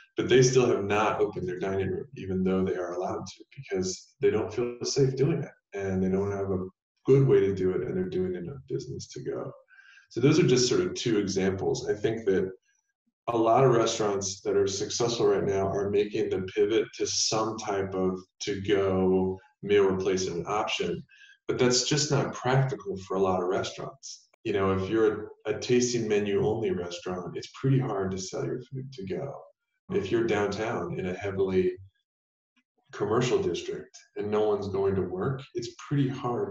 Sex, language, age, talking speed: male, English, 20-39, 190 wpm